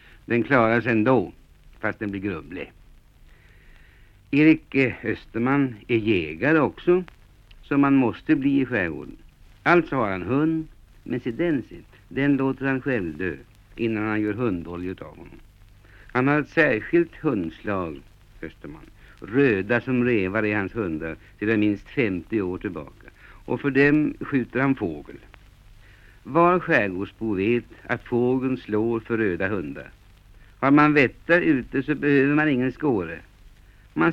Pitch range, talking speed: 105-145 Hz, 135 wpm